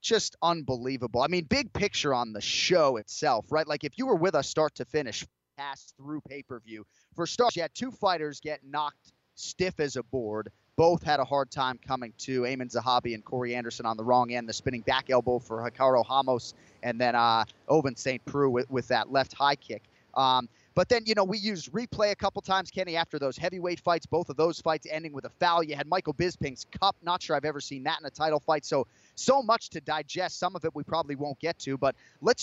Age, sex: 30-49, male